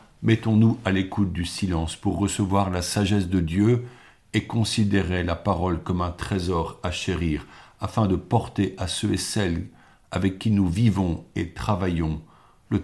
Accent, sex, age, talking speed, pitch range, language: French, male, 50-69, 160 wpm, 90-105 Hz, French